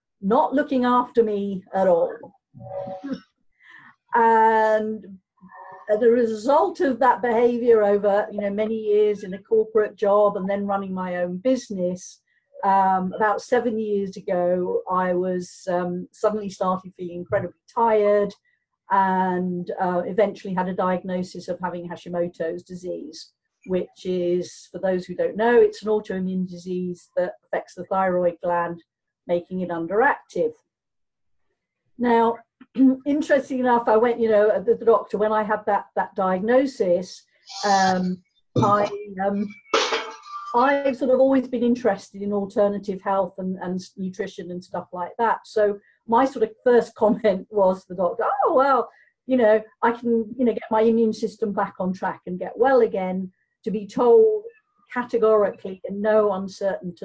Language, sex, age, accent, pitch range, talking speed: English, female, 50-69, British, 185-230 Hz, 145 wpm